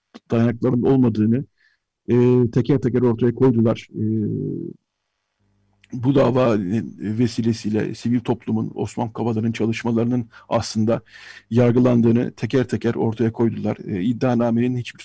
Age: 50-69